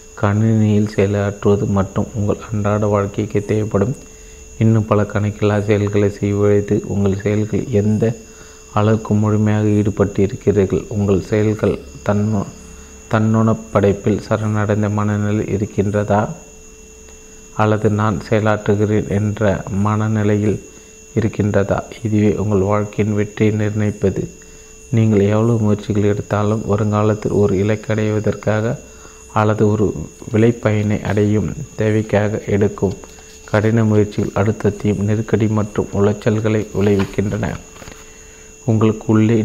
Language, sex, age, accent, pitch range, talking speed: Tamil, male, 30-49, native, 100-110 Hz, 95 wpm